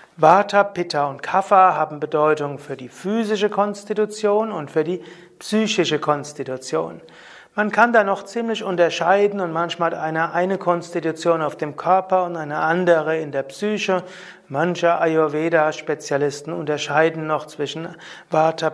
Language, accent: German, German